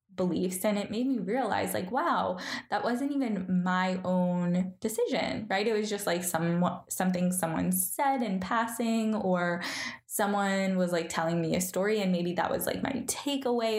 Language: English